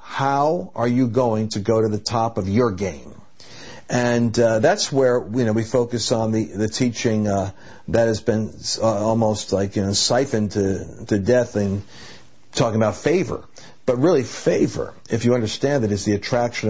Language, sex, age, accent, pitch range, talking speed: English, male, 50-69, American, 105-120 Hz, 180 wpm